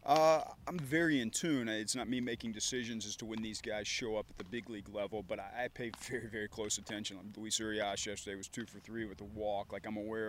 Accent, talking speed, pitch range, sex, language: American, 255 wpm, 100-115 Hz, male, English